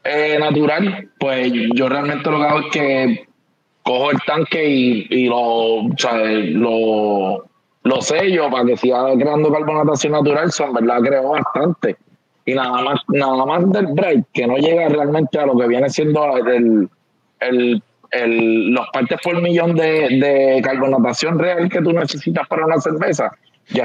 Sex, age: male, 20-39